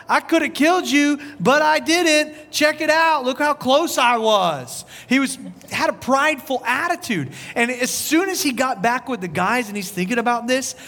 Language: English